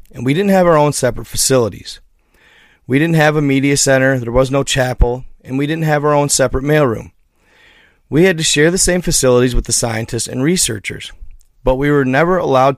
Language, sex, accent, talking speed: English, male, American, 200 wpm